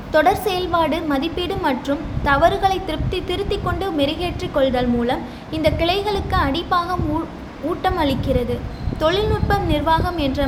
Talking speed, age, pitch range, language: 95 wpm, 20-39, 285-360 Hz, Tamil